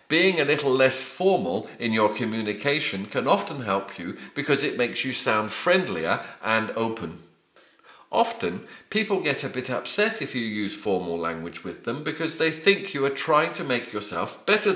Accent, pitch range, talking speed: British, 115-185 Hz, 175 wpm